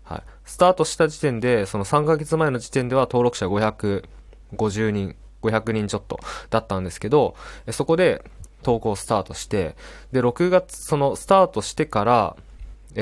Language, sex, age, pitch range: Japanese, male, 20-39, 95-145 Hz